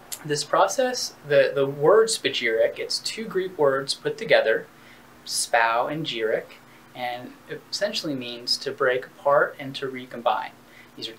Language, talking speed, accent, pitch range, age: English, 140 wpm, American, 120-185 Hz, 20-39